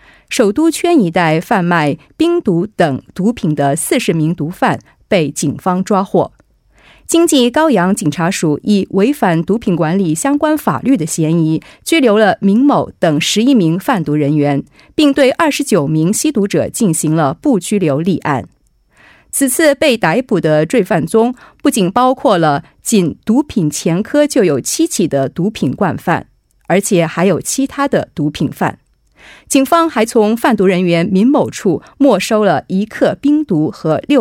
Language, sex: Korean, female